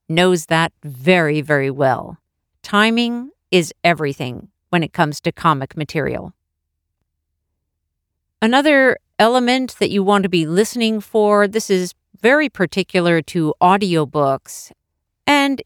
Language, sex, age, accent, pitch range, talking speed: English, female, 50-69, American, 155-215 Hz, 115 wpm